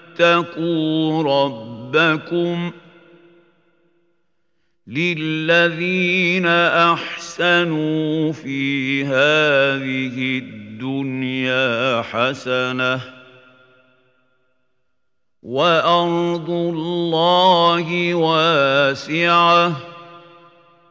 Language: Arabic